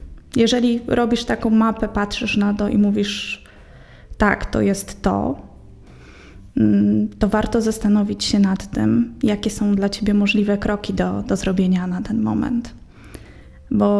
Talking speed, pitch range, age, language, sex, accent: 135 wpm, 185-225 Hz, 20-39, Polish, female, native